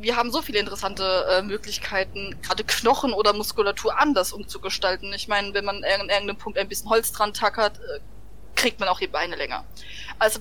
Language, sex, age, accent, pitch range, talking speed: German, female, 20-39, German, 200-235 Hz, 190 wpm